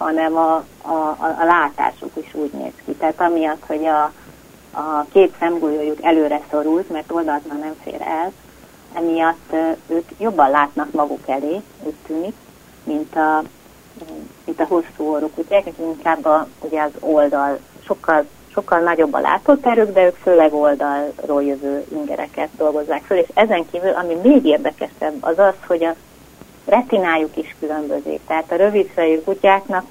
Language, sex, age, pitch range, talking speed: Hungarian, female, 30-49, 155-185 Hz, 145 wpm